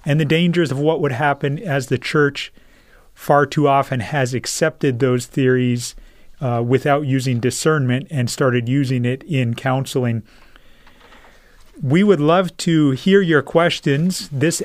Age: 30-49